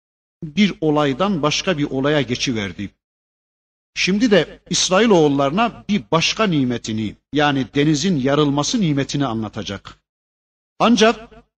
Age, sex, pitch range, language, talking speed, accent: 50-69, male, 125-185 Hz, Turkish, 95 wpm, native